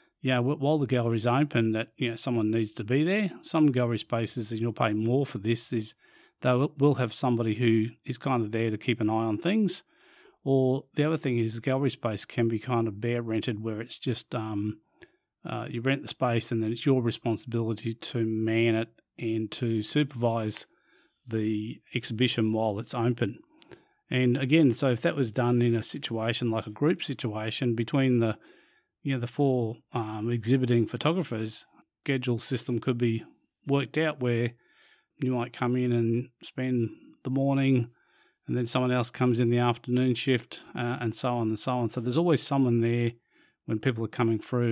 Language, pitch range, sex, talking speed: English, 115-135 Hz, male, 190 wpm